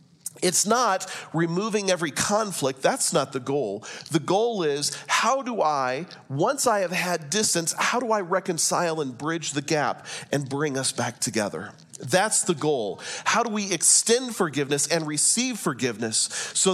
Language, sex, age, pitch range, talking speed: English, male, 40-59, 145-190 Hz, 160 wpm